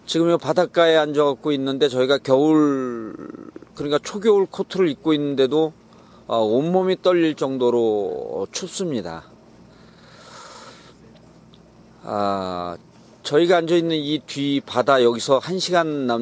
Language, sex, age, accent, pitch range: Korean, male, 40-59, native, 125-165 Hz